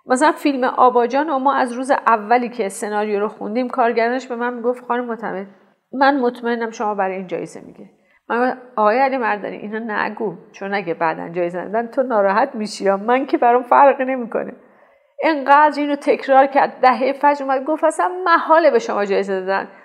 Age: 40-59